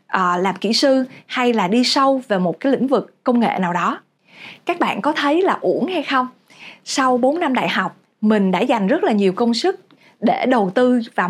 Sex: female